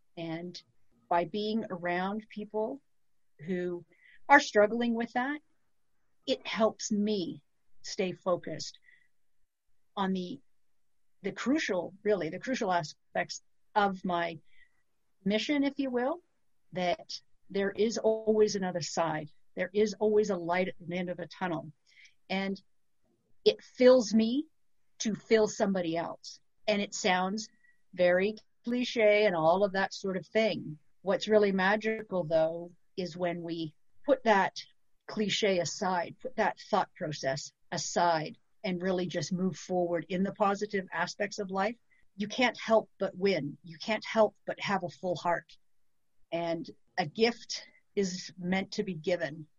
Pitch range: 170-215 Hz